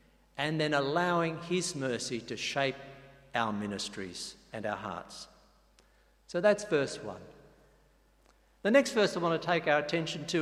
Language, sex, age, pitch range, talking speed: English, male, 60-79, 125-160 Hz, 150 wpm